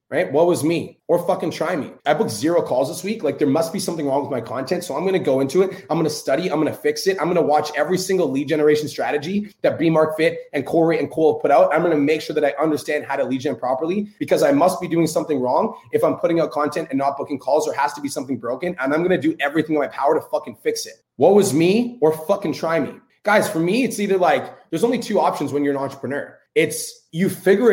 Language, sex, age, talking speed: English, male, 20-39, 280 wpm